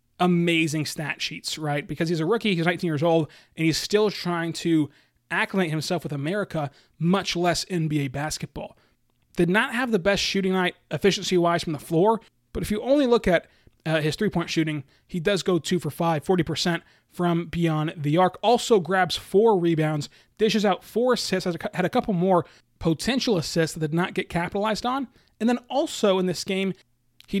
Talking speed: 185 wpm